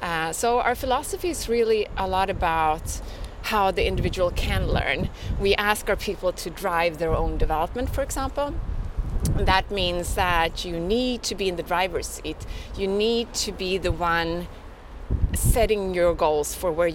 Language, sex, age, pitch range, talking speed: English, female, 30-49, 170-235 Hz, 165 wpm